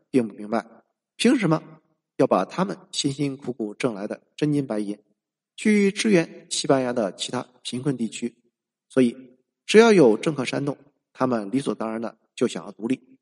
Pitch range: 120-180 Hz